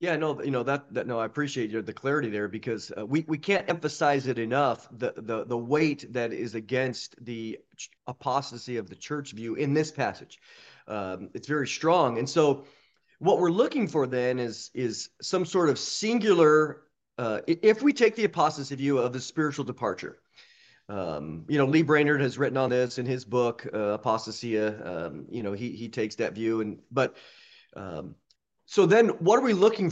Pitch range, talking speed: 120-165 Hz, 195 wpm